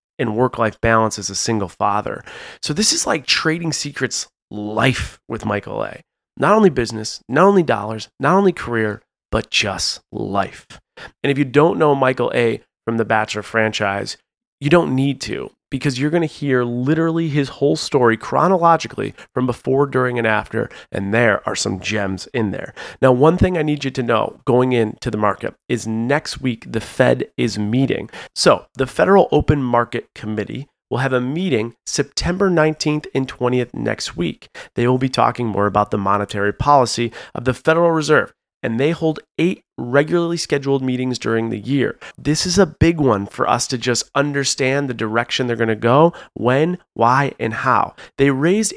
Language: English